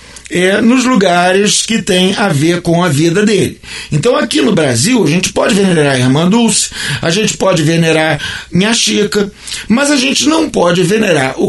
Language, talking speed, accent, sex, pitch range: Portuguese, 185 wpm, Brazilian, male, 170-220 Hz